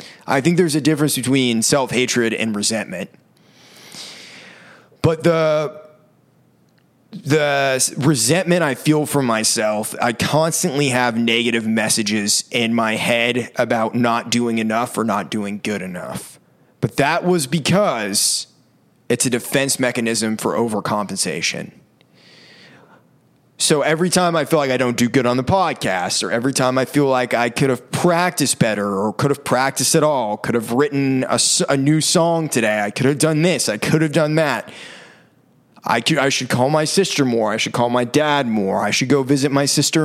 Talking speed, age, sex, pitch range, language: 170 wpm, 20-39, male, 115-155 Hz, English